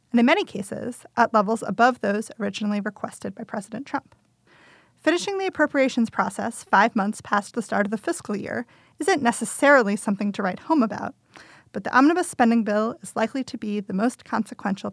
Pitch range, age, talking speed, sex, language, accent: 205-265 Hz, 30-49, 175 wpm, female, English, American